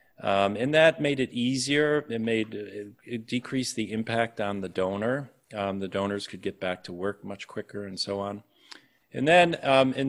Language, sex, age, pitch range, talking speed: English, male, 40-59, 100-125 Hz, 195 wpm